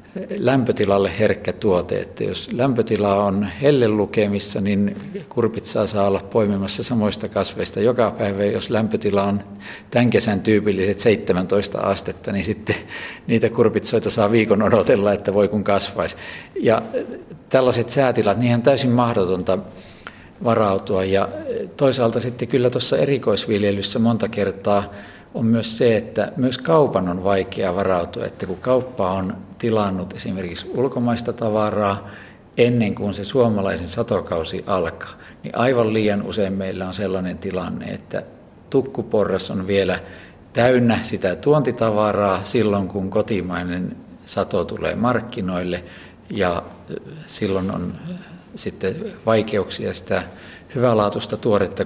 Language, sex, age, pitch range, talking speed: Finnish, male, 50-69, 100-120 Hz, 120 wpm